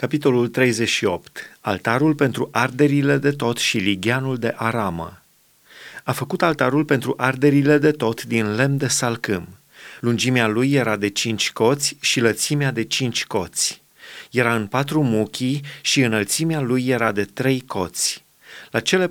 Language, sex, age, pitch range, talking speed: Romanian, male, 30-49, 115-145 Hz, 145 wpm